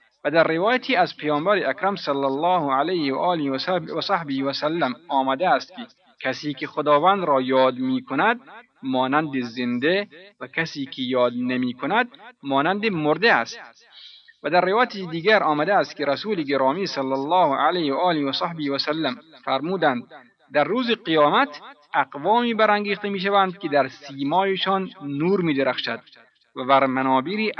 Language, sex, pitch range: Persian, male, 135-195 Hz